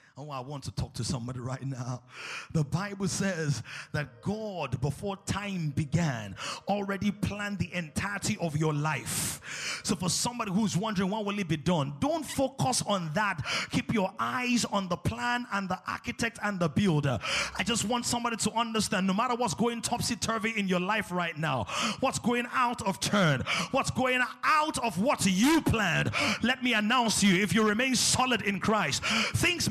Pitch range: 190-255 Hz